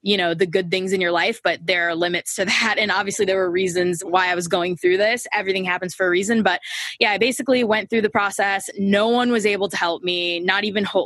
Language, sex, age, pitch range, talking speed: English, female, 20-39, 175-200 Hz, 260 wpm